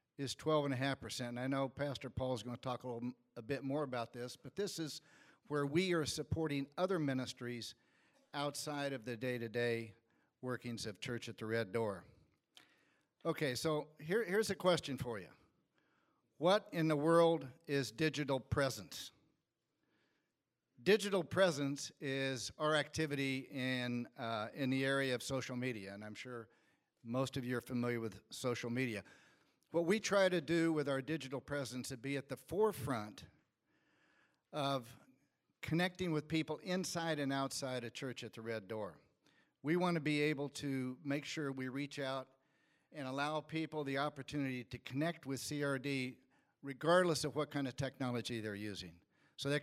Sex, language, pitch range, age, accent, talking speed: male, English, 125-155 Hz, 50-69, American, 165 wpm